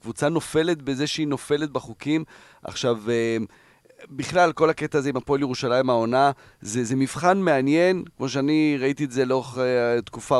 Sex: male